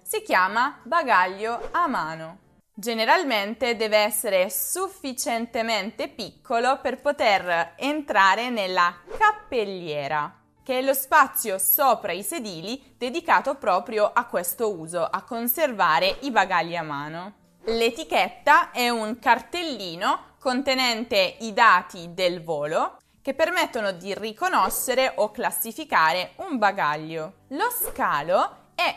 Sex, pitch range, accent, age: female, 190-290 Hz, native, 20-39